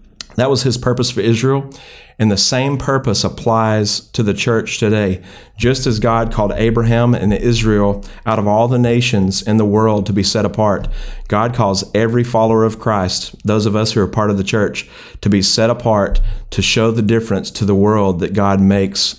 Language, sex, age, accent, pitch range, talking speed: English, male, 40-59, American, 100-120 Hz, 195 wpm